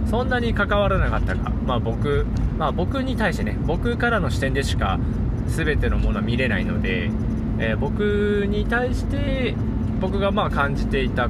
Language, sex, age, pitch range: Japanese, male, 20-39, 95-115 Hz